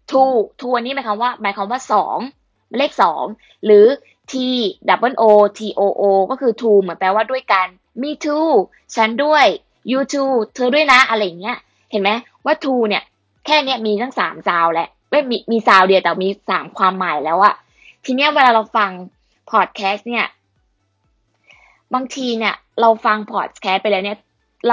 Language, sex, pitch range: Thai, female, 200-255 Hz